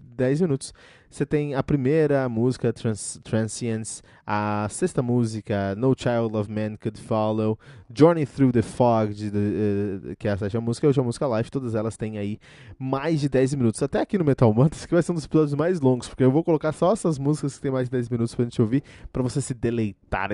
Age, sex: 20-39, male